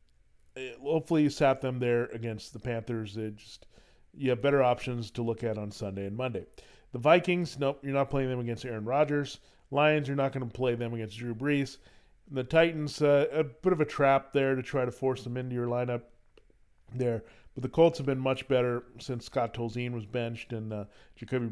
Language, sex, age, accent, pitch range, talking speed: English, male, 40-59, American, 115-140 Hz, 205 wpm